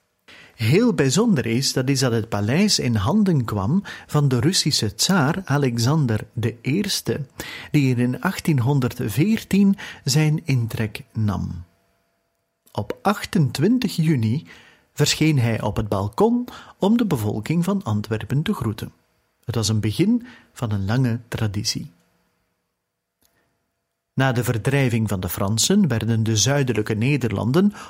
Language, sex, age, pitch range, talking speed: Dutch, male, 40-59, 110-150 Hz, 120 wpm